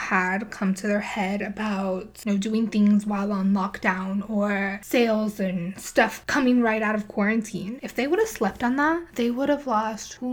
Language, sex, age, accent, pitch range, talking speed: English, female, 10-29, American, 205-260 Hz, 200 wpm